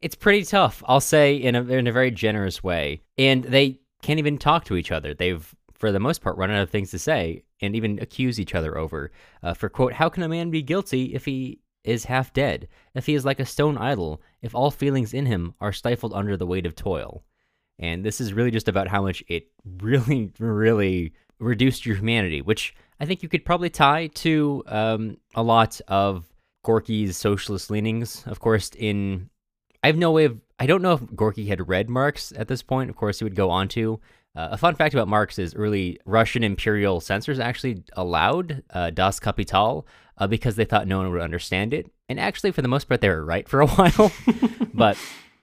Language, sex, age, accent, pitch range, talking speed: English, male, 20-39, American, 95-130 Hz, 215 wpm